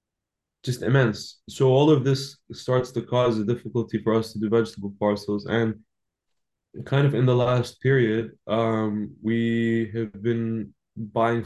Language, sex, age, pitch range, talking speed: English, male, 20-39, 105-115 Hz, 150 wpm